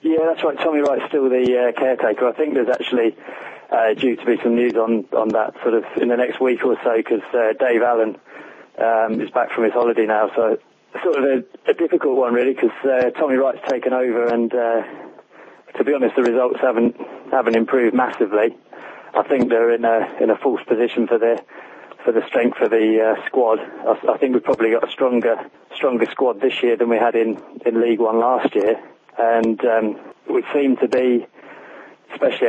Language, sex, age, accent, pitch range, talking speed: English, male, 20-39, British, 115-130 Hz, 205 wpm